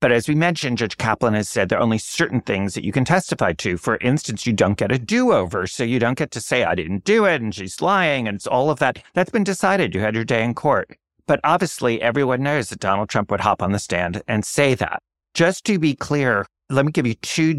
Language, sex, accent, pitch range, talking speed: English, male, American, 95-135 Hz, 260 wpm